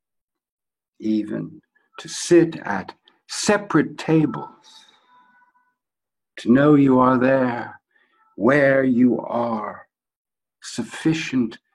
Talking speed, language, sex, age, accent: 75 wpm, English, male, 60-79, American